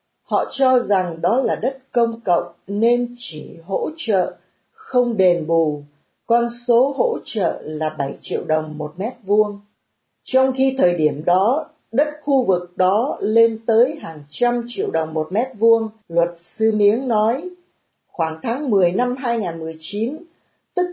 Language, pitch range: Vietnamese, 175-255 Hz